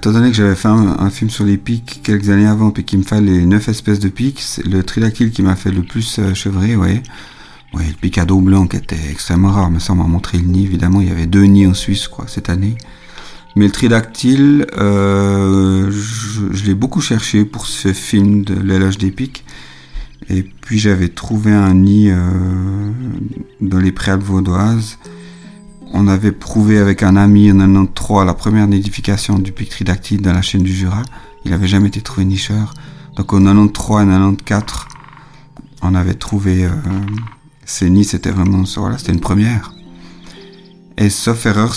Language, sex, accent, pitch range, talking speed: French, male, French, 95-110 Hz, 190 wpm